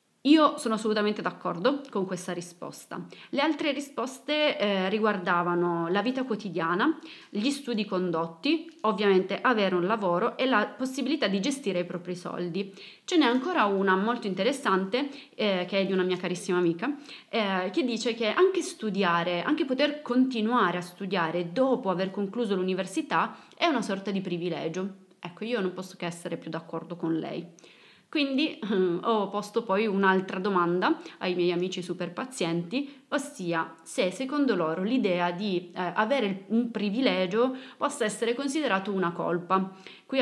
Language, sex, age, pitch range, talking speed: Italian, female, 30-49, 180-255 Hz, 150 wpm